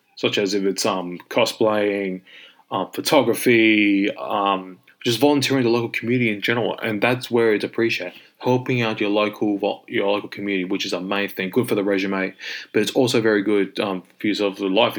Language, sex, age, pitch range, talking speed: English, male, 20-39, 95-120 Hz, 190 wpm